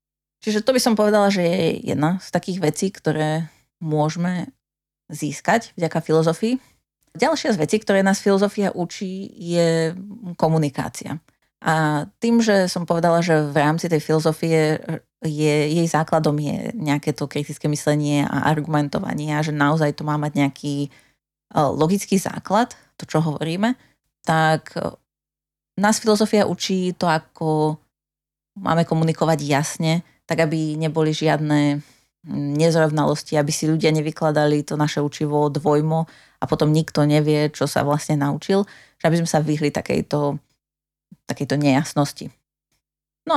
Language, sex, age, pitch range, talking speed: Slovak, female, 30-49, 150-175 Hz, 135 wpm